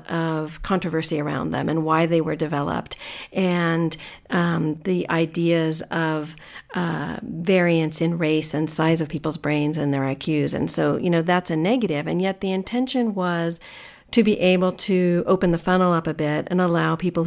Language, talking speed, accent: English, 175 wpm, American